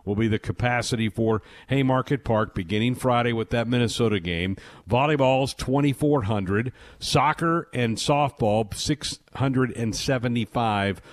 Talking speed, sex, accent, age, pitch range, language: 100 wpm, male, American, 50-69, 105-130 Hz, English